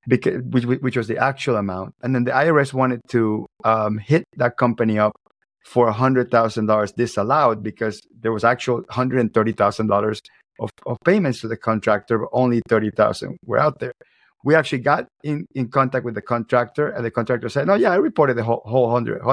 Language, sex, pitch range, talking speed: English, male, 115-135 Hz, 175 wpm